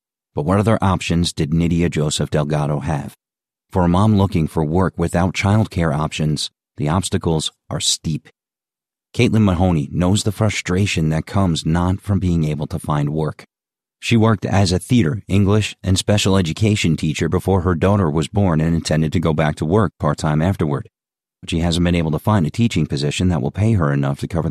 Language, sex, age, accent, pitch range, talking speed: English, male, 40-59, American, 80-100 Hz, 190 wpm